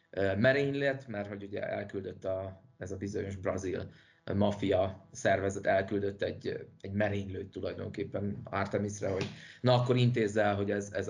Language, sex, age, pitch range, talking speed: Hungarian, male, 30-49, 100-130 Hz, 140 wpm